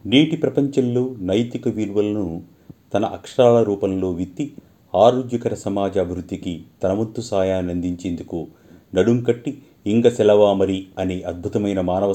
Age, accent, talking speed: 30-49, native, 100 wpm